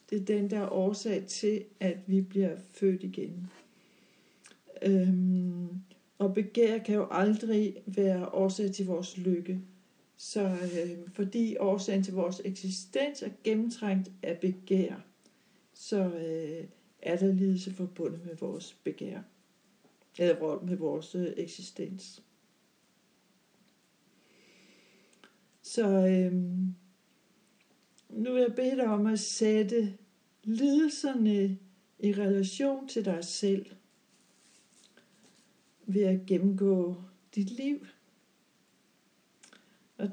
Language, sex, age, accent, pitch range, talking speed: Danish, female, 60-79, native, 185-210 Hz, 105 wpm